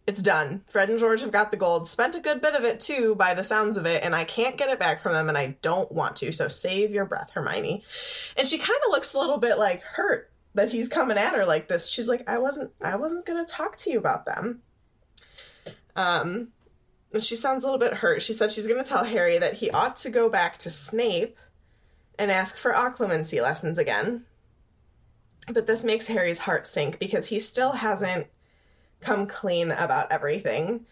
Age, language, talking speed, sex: 20-39, English, 215 wpm, female